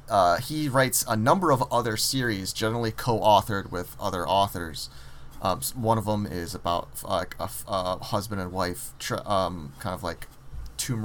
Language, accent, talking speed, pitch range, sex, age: English, American, 170 wpm, 90-115 Hz, male, 30-49